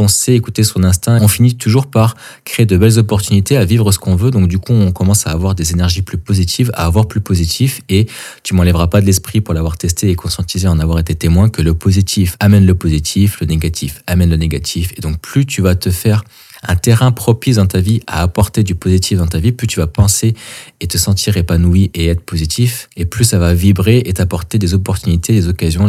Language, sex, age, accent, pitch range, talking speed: French, male, 20-39, French, 90-110 Hz, 230 wpm